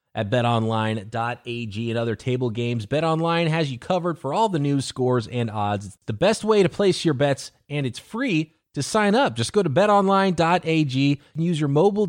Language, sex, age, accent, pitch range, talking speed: English, male, 30-49, American, 110-155 Hz, 200 wpm